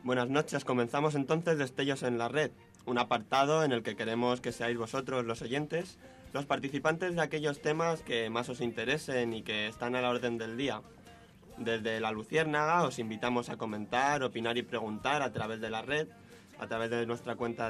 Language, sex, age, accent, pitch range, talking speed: Spanish, male, 20-39, Spanish, 115-140 Hz, 190 wpm